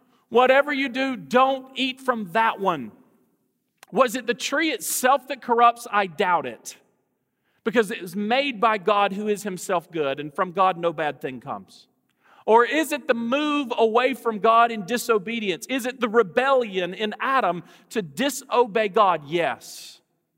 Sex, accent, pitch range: male, American, 180-235 Hz